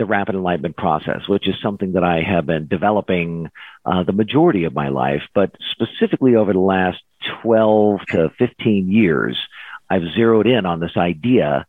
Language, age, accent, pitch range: English, 50-69, American, 95-125 Hz